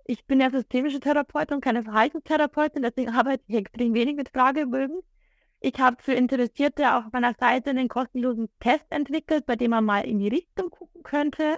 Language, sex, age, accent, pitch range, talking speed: German, female, 30-49, German, 215-270 Hz, 180 wpm